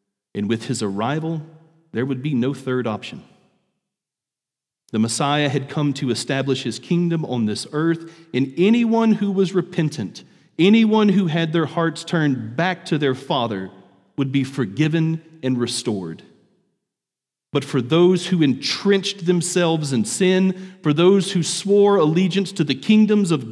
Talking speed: 150 wpm